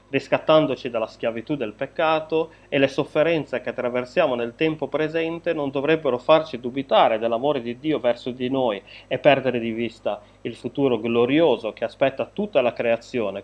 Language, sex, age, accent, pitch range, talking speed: Italian, male, 30-49, native, 115-145 Hz, 155 wpm